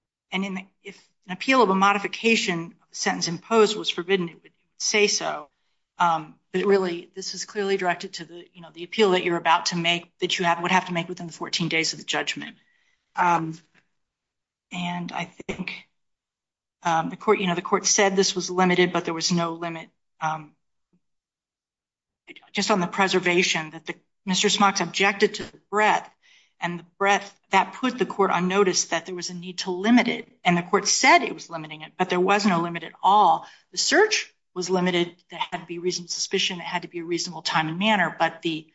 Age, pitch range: 40-59, 170-195 Hz